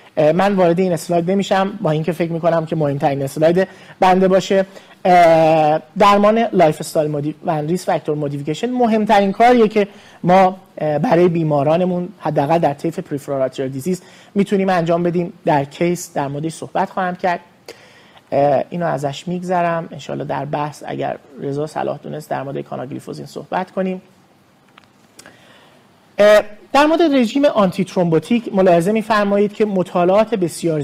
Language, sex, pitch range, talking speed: Persian, male, 155-200 Hz, 130 wpm